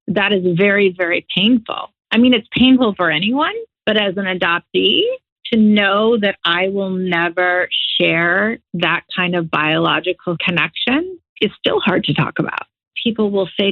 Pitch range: 180-220 Hz